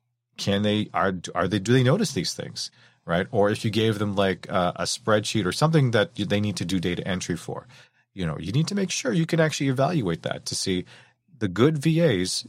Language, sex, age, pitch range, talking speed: English, male, 30-49, 95-125 Hz, 225 wpm